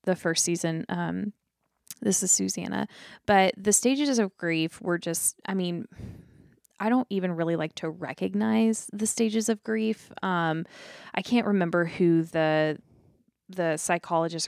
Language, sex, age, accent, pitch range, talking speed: English, female, 20-39, American, 160-190 Hz, 145 wpm